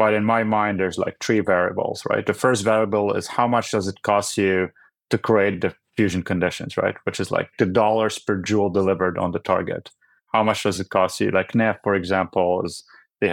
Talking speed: 215 wpm